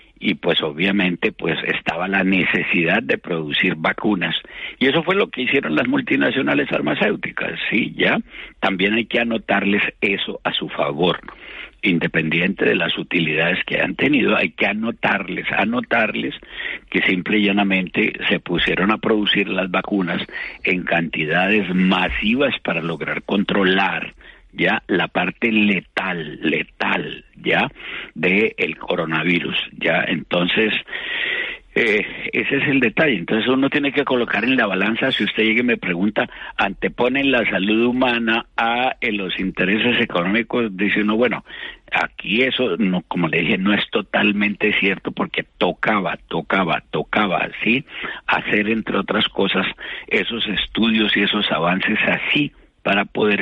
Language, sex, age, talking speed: Spanish, male, 60-79, 140 wpm